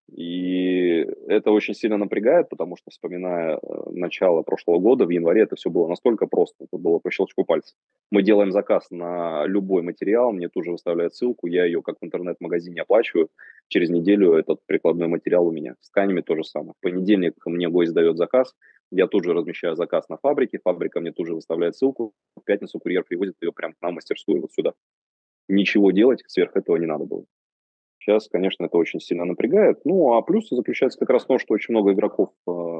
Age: 20-39